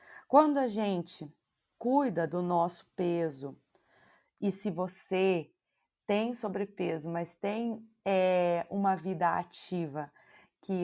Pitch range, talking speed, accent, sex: 170-210 Hz, 100 wpm, Brazilian, female